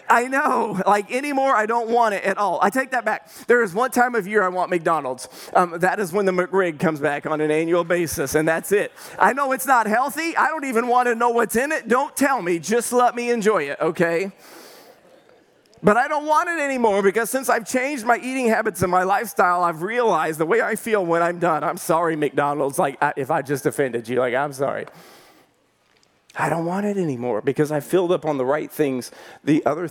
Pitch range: 165-215 Hz